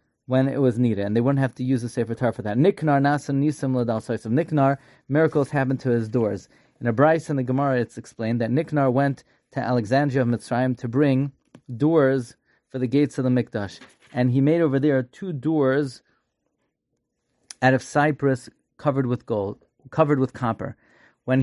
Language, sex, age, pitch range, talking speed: English, male, 30-49, 120-140 Hz, 185 wpm